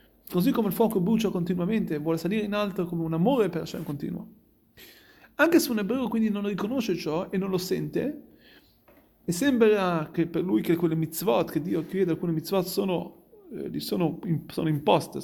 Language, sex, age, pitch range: Italian, male, 30-49, 165-220 Hz